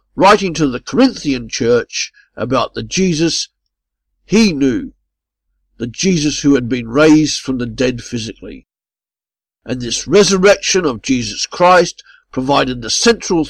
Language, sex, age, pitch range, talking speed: English, male, 50-69, 130-175 Hz, 130 wpm